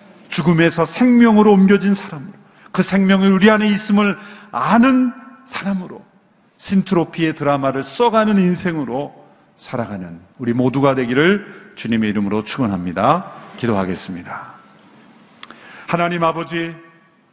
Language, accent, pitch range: Korean, native, 145-195 Hz